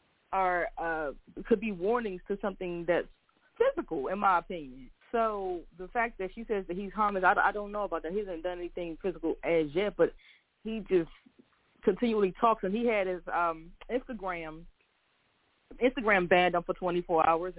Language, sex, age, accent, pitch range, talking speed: English, female, 20-39, American, 175-215 Hz, 175 wpm